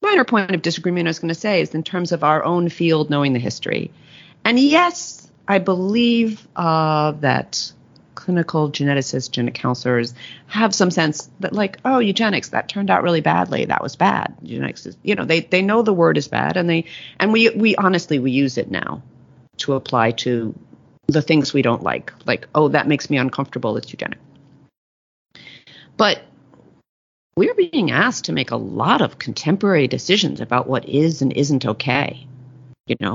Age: 40-59